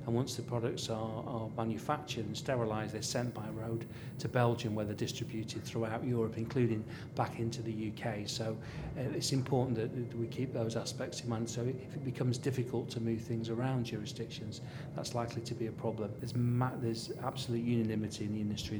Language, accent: English, British